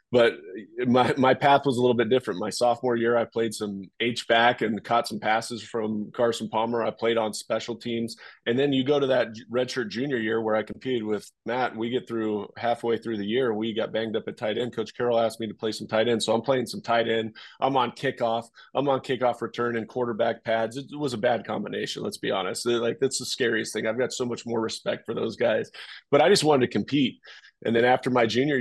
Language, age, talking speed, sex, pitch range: English, 20-39, 245 wpm, male, 110-120 Hz